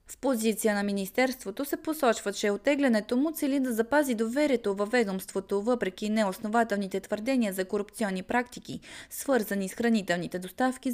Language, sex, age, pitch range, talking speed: Bulgarian, female, 20-39, 200-250 Hz, 135 wpm